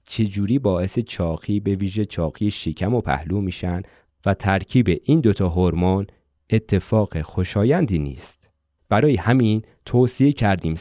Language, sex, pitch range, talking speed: Persian, male, 90-120 Hz, 120 wpm